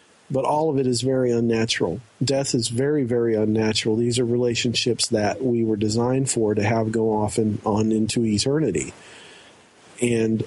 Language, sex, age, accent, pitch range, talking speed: English, male, 40-59, American, 110-130 Hz, 165 wpm